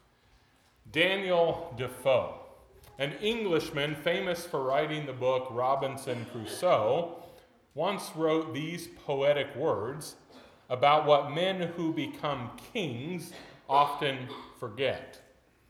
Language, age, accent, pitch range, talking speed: English, 30-49, American, 125-160 Hz, 90 wpm